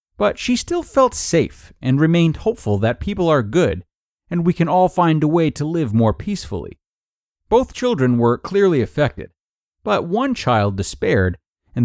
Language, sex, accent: English, male, American